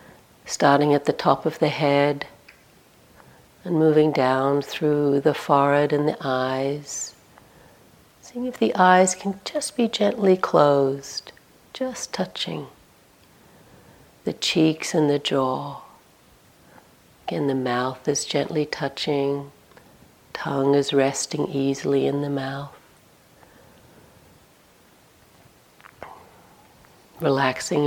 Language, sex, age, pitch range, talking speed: English, female, 60-79, 140-170 Hz, 100 wpm